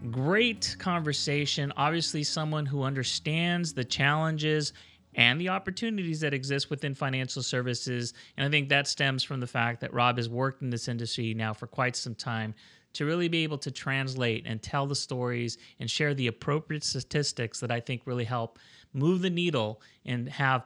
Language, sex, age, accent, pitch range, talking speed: English, male, 30-49, American, 125-150 Hz, 175 wpm